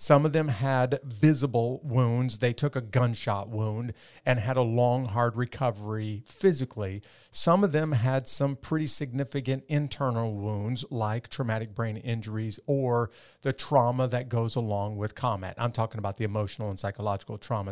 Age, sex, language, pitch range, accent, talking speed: 40-59, male, English, 110-140 Hz, American, 160 wpm